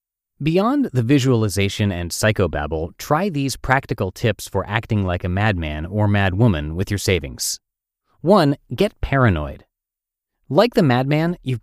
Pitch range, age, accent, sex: 95-130 Hz, 30-49, American, male